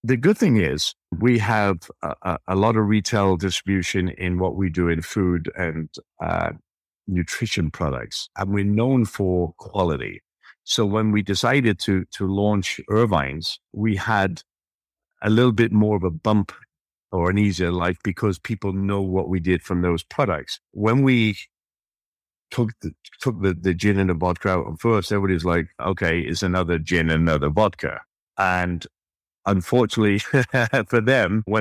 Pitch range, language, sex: 85-105 Hz, English, male